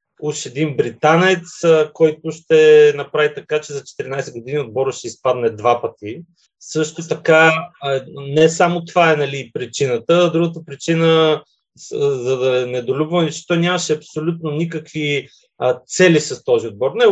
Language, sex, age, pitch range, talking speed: Bulgarian, male, 30-49, 140-195 Hz, 135 wpm